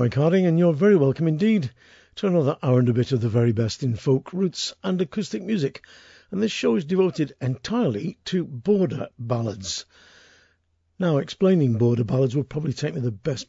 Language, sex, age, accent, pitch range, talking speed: English, male, 50-69, British, 125-165 Hz, 185 wpm